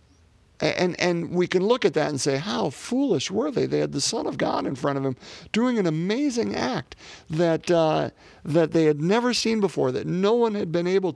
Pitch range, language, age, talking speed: 105-155 Hz, English, 50-69, 220 wpm